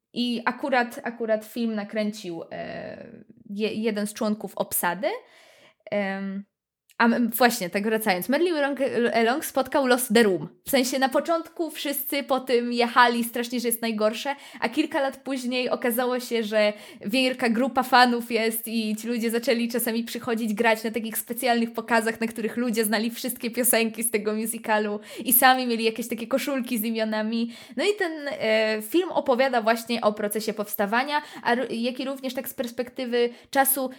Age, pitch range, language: 20-39, 215-260 Hz, Polish